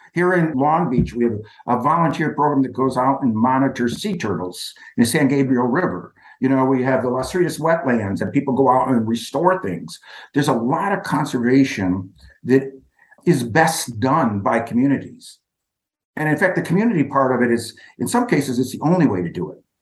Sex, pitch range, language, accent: male, 120-160 Hz, English, American